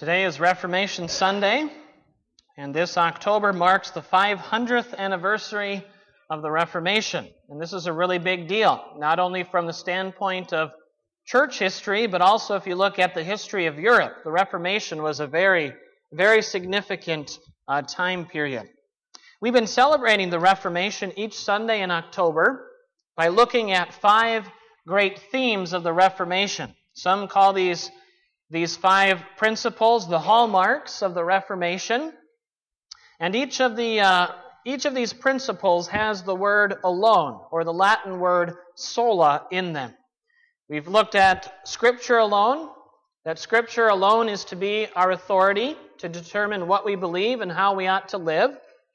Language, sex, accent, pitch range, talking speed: English, male, American, 180-225 Hz, 145 wpm